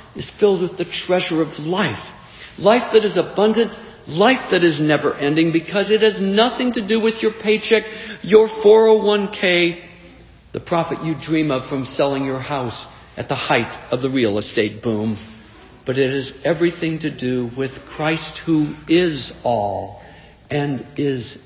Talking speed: 155 wpm